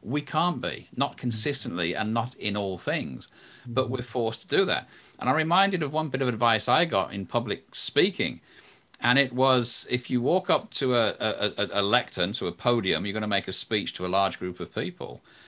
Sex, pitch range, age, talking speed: male, 110-140 Hz, 40-59, 215 wpm